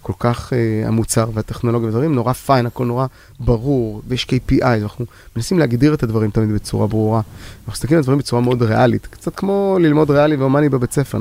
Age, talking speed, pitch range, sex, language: 30-49, 185 wpm, 105-130 Hz, male, Hebrew